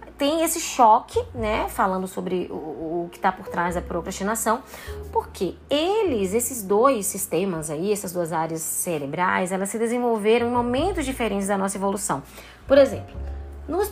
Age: 20-39